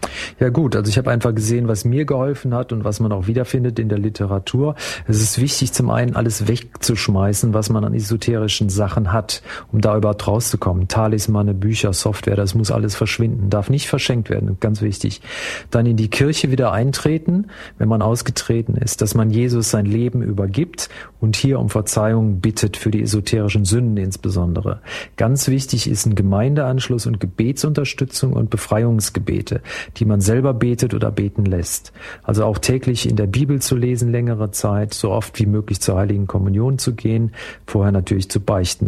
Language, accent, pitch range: German, German, 105-120 Hz